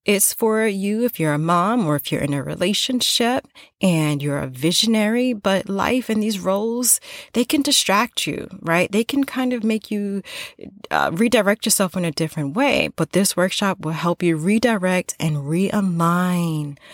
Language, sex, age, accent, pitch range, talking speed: English, female, 30-49, American, 165-230 Hz, 175 wpm